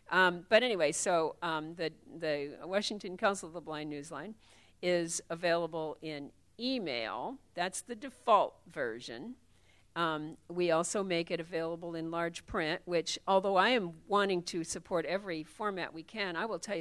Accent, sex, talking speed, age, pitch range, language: American, female, 155 wpm, 50-69, 160-190 Hz, English